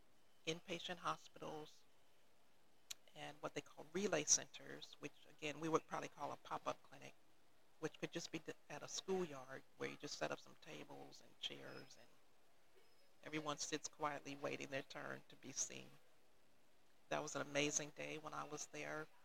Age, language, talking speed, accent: 40-59, English, 160 wpm, American